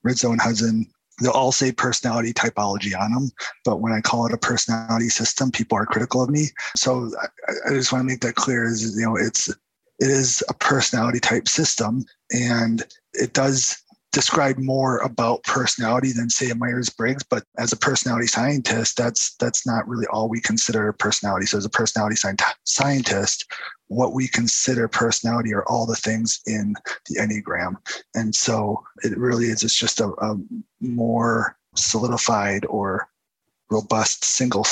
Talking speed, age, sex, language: 170 wpm, 20-39, male, English